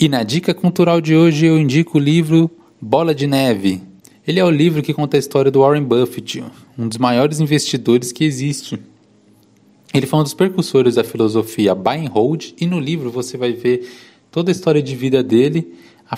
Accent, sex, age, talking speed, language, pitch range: Brazilian, male, 20-39, 195 wpm, Portuguese, 120-165 Hz